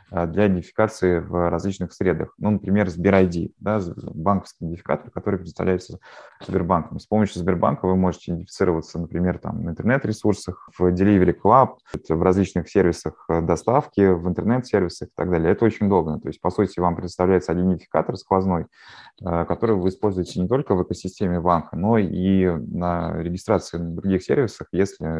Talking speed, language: 150 wpm, Russian